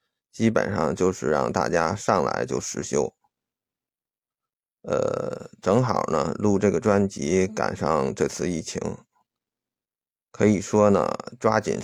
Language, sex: Chinese, male